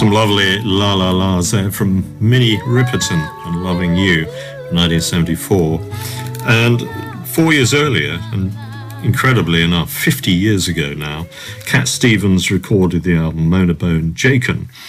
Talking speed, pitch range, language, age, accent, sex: 120 wpm, 90-125 Hz, English, 50-69, British, male